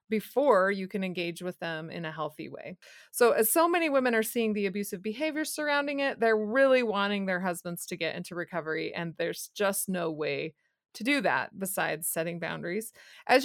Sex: female